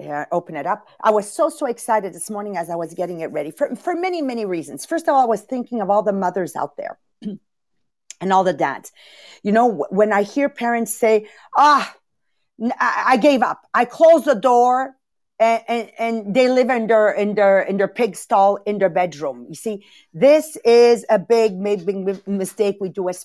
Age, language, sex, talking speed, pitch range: 50-69, English, female, 205 wpm, 205-280 Hz